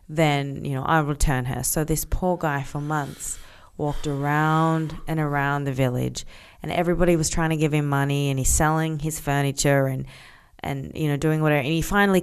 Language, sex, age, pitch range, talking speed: English, female, 20-39, 140-175 Hz, 200 wpm